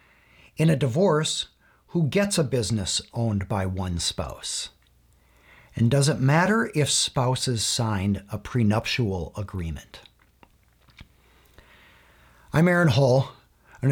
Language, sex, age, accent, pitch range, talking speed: English, male, 50-69, American, 105-140 Hz, 110 wpm